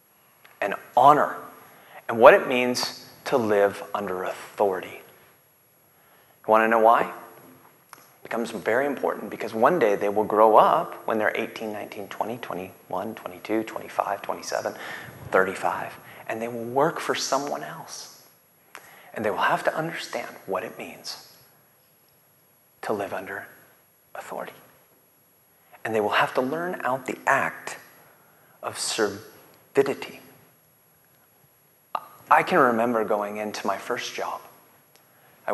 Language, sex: English, male